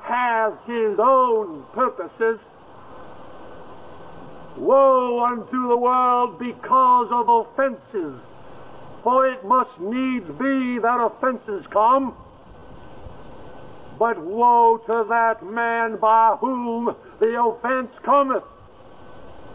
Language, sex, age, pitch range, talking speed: English, male, 60-79, 230-270 Hz, 90 wpm